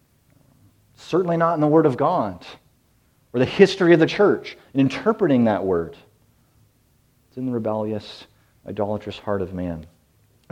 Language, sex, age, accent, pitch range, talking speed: English, male, 40-59, American, 110-140 Hz, 150 wpm